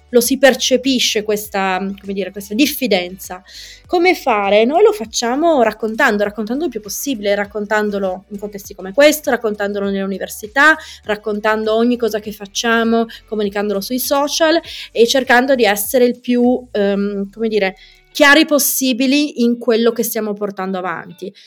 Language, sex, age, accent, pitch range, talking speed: Italian, female, 30-49, native, 205-255 Hz, 140 wpm